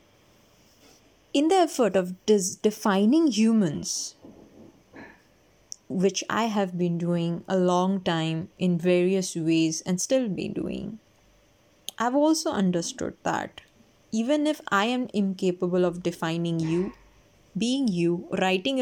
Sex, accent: female, Indian